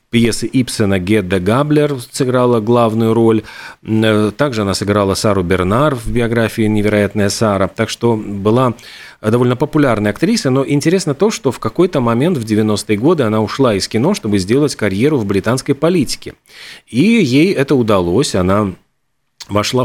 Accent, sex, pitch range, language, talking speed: native, male, 105-130 Hz, Russian, 145 wpm